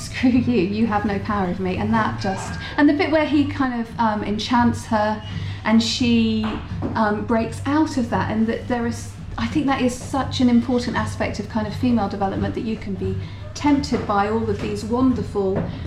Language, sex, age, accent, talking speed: English, female, 40-59, British, 210 wpm